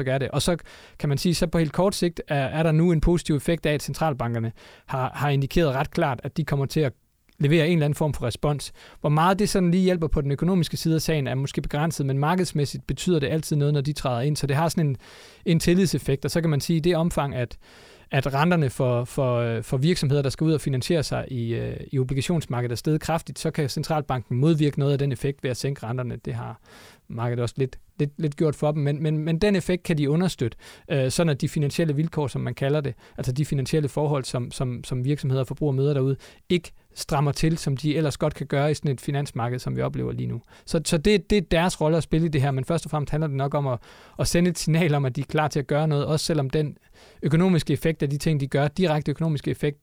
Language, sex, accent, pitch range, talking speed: Danish, male, native, 135-160 Hz, 255 wpm